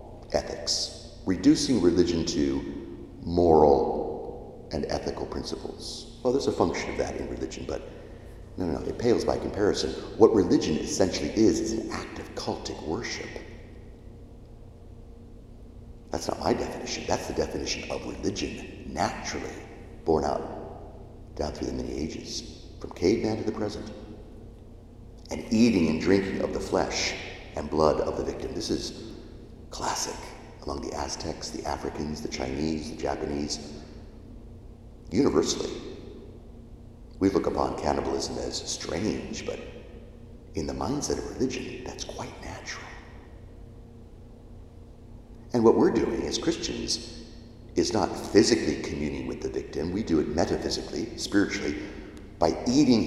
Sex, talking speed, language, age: male, 130 wpm, English, 50-69